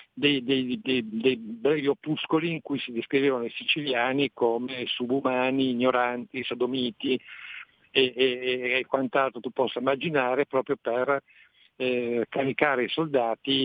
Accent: native